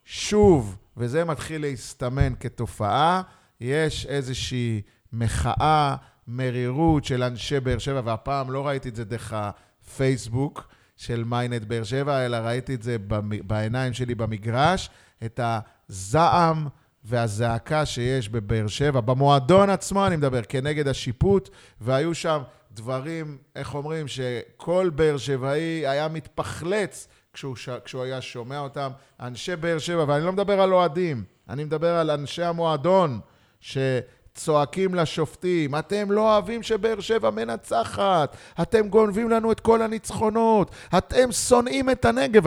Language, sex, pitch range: Hebrew, male, 125-185 Hz